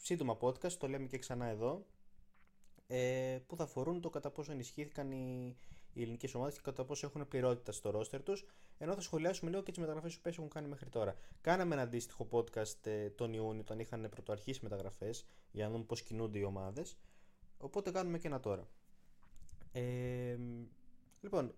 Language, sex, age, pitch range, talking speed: Greek, male, 20-39, 105-140 Hz, 170 wpm